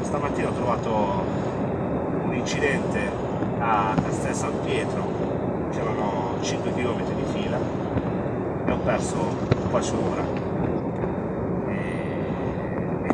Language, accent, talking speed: Italian, native, 90 wpm